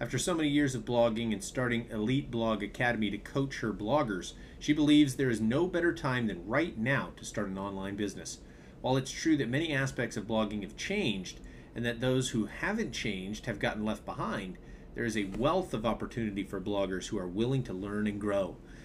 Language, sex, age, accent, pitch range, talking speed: English, male, 40-59, American, 105-135 Hz, 205 wpm